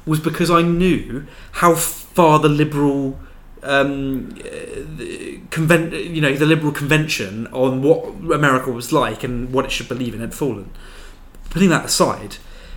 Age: 20-39